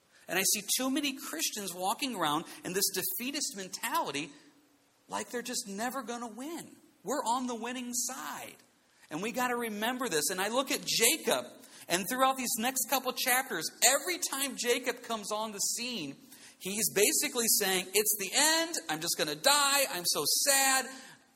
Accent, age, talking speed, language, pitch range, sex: American, 40-59, 175 wpm, English, 160-250 Hz, male